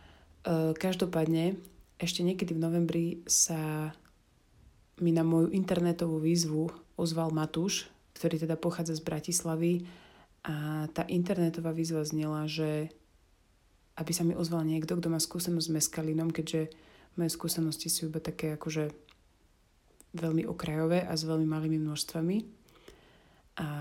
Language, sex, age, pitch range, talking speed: Slovak, female, 30-49, 155-170 Hz, 125 wpm